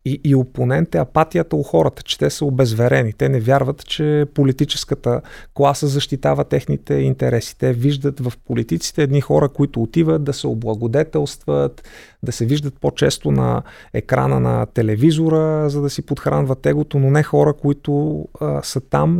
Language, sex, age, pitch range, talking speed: Bulgarian, male, 30-49, 125-155 Hz, 160 wpm